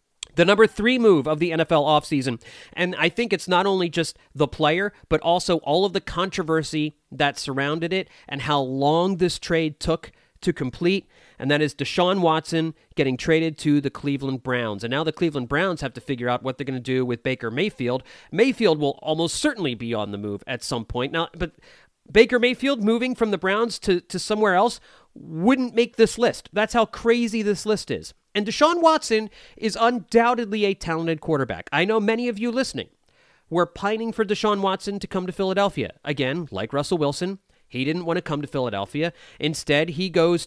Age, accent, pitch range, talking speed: 40-59, American, 140-200 Hz, 195 wpm